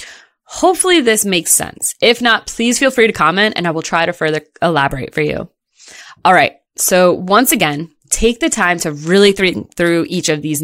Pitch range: 165-235 Hz